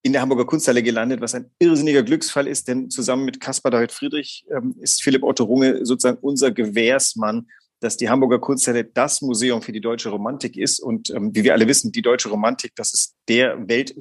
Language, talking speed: German, 205 wpm